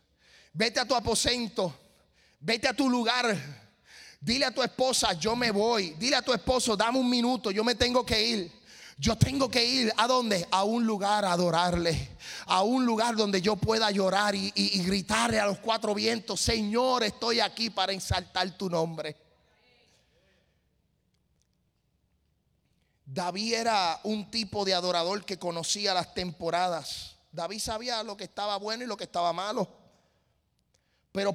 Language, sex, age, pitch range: Spanish, male, 30-49, 170-225 Hz